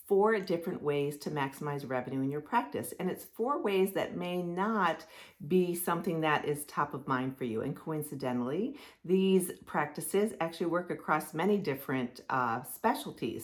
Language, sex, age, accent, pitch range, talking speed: English, female, 40-59, American, 145-195 Hz, 160 wpm